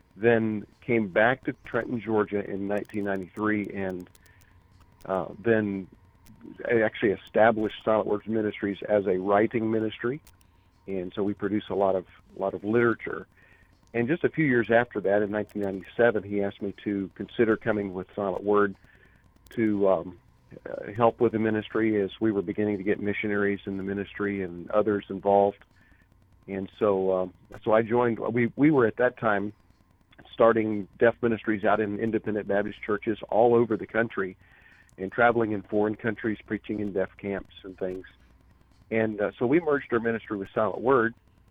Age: 40-59